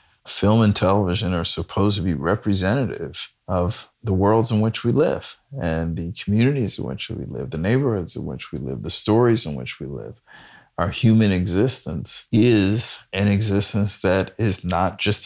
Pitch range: 95-110 Hz